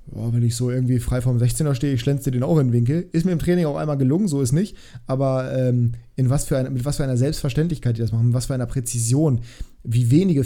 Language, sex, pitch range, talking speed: German, male, 120-150 Hz, 265 wpm